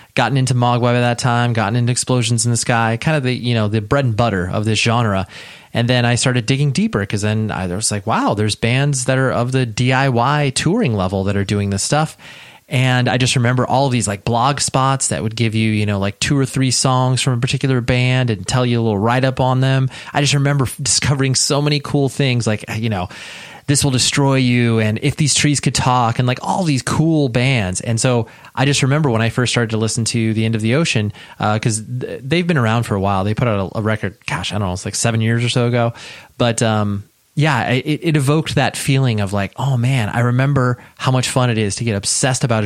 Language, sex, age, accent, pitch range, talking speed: English, male, 30-49, American, 110-135 Hz, 250 wpm